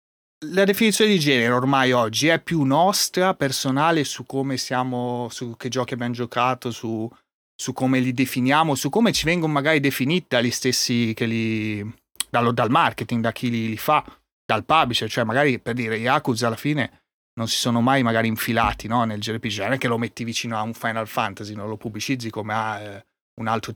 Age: 30-49